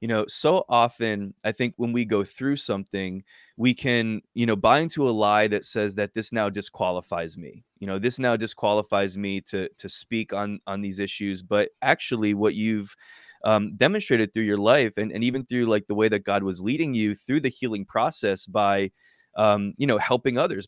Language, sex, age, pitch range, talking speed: English, male, 20-39, 100-120 Hz, 205 wpm